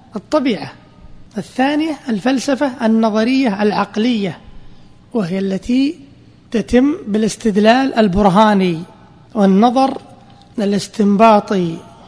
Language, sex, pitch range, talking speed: Arabic, male, 190-235 Hz, 60 wpm